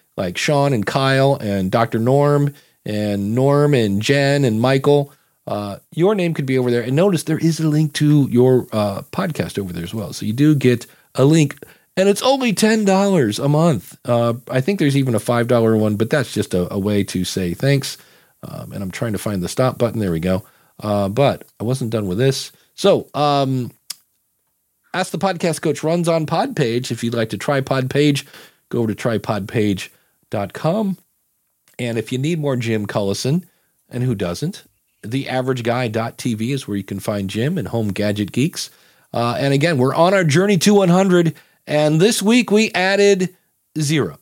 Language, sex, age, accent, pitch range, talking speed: English, male, 40-59, American, 110-155 Hz, 195 wpm